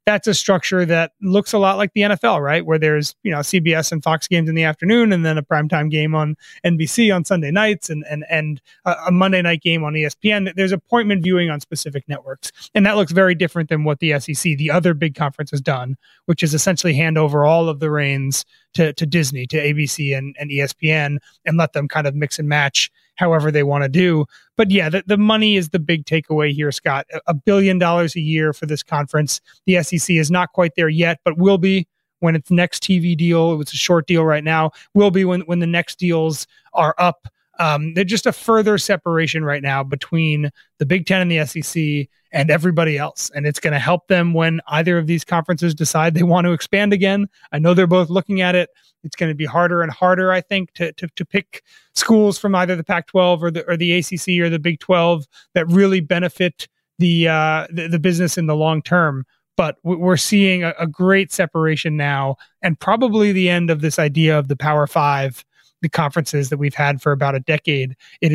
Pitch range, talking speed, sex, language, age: 150-180 Hz, 220 wpm, male, English, 30-49